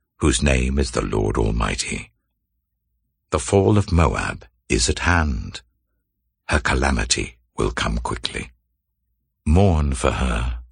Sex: male